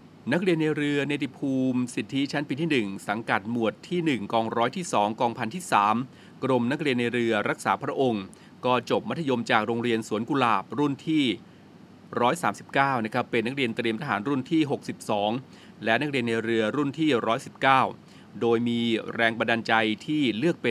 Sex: male